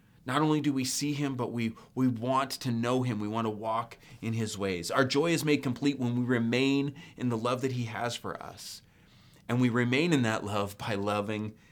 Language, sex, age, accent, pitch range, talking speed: English, male, 30-49, American, 110-135 Hz, 225 wpm